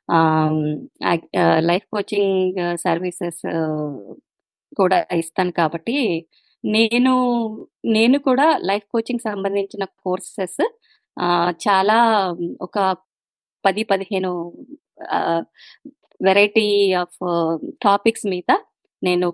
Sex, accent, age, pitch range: female, native, 20-39, 175-225 Hz